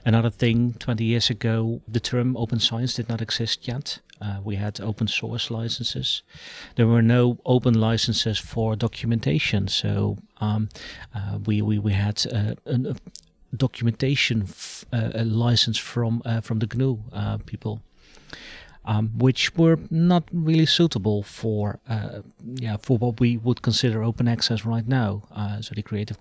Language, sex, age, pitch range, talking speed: English, male, 40-59, 105-125 Hz, 155 wpm